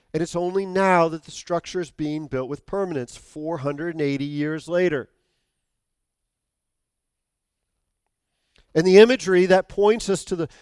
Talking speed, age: 130 wpm, 40-59